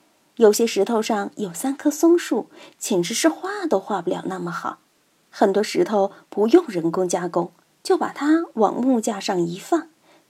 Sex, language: female, Chinese